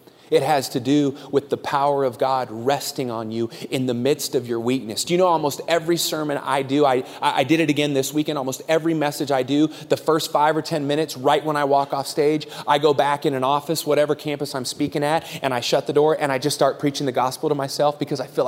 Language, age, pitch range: English, 30-49, 135-160 Hz